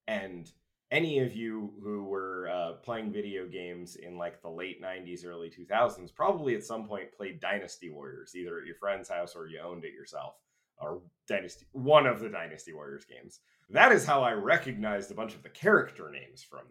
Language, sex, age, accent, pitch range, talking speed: English, male, 30-49, American, 95-140 Hz, 195 wpm